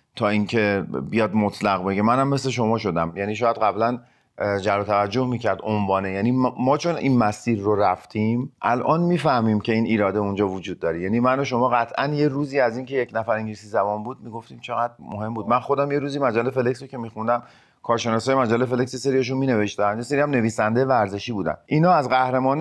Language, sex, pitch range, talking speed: Persian, male, 105-140 Hz, 190 wpm